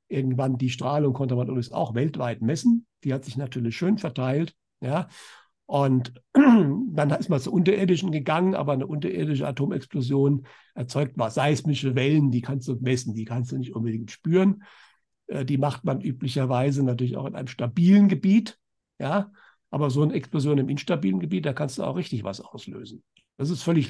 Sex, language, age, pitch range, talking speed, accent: male, German, 60-79, 130-165 Hz, 175 wpm, German